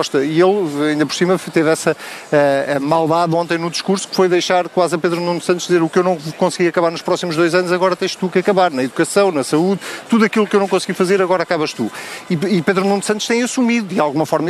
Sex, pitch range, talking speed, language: male, 160-195 Hz, 245 wpm, Portuguese